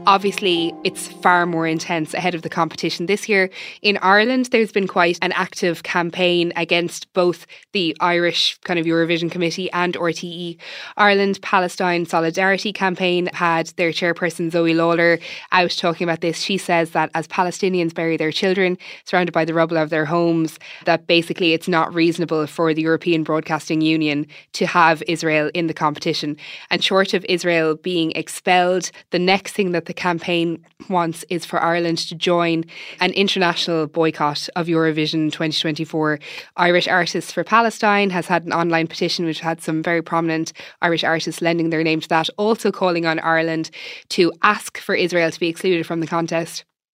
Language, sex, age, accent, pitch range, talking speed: English, female, 20-39, Irish, 160-180 Hz, 170 wpm